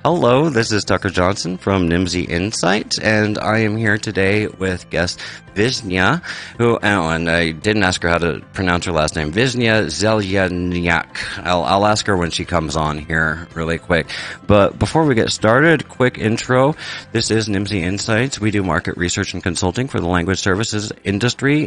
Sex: male